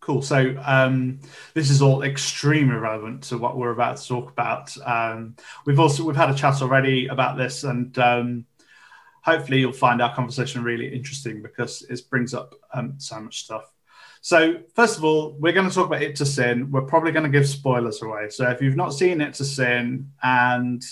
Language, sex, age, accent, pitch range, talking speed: English, male, 30-49, British, 125-145 Hz, 200 wpm